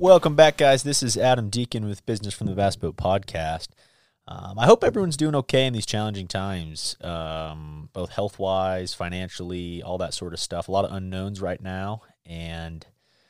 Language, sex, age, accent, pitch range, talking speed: English, male, 30-49, American, 85-110 Hz, 180 wpm